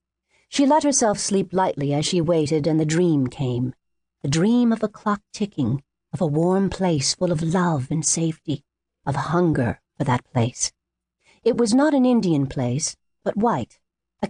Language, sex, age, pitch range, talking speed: English, female, 50-69, 150-195 Hz, 170 wpm